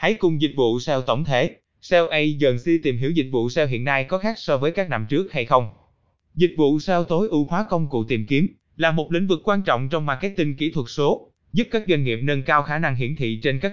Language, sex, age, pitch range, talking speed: Vietnamese, male, 20-39, 130-180 Hz, 255 wpm